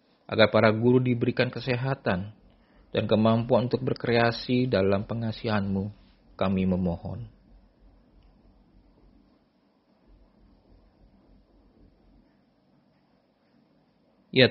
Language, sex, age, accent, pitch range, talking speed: Indonesian, male, 40-59, native, 110-130 Hz, 60 wpm